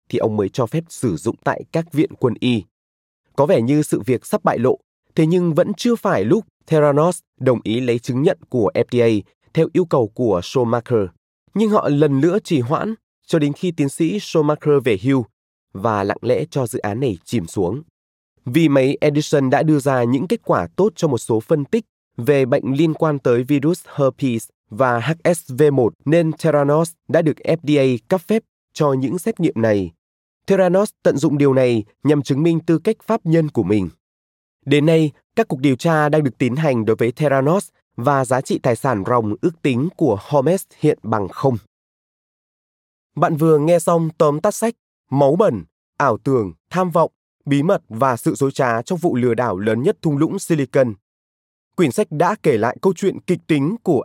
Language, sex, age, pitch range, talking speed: Vietnamese, male, 20-39, 125-170 Hz, 195 wpm